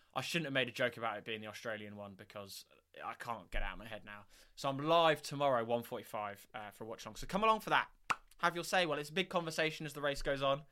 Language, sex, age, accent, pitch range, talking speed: English, male, 20-39, British, 115-170 Hz, 275 wpm